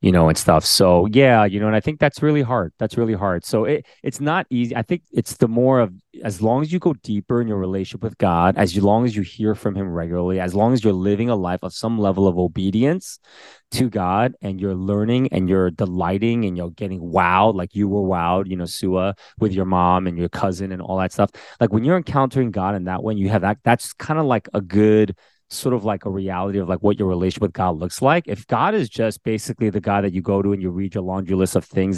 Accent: American